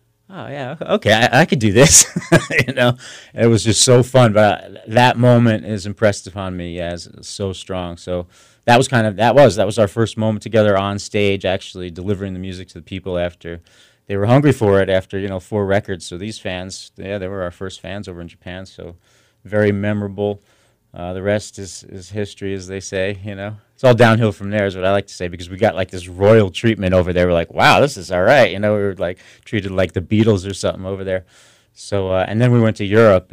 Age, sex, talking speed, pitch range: 30-49, male, 240 wpm, 90-110 Hz